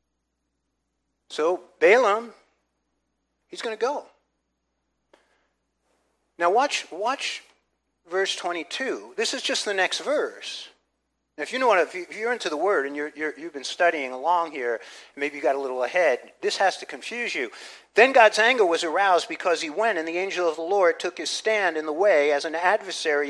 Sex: male